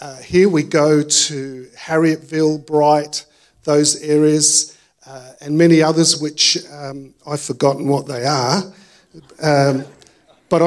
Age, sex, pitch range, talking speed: 50-69, male, 140-170 Hz, 125 wpm